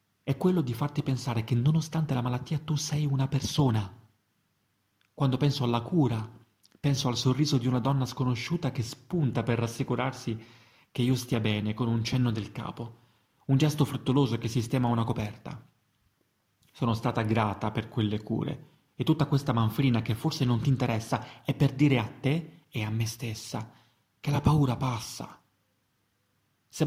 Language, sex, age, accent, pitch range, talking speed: Italian, male, 30-49, native, 110-135 Hz, 165 wpm